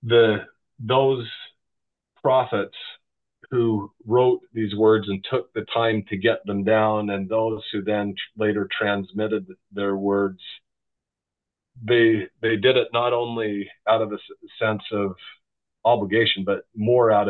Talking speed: 130 wpm